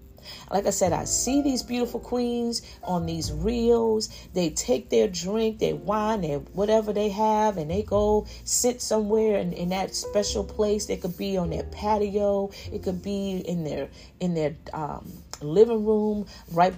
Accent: American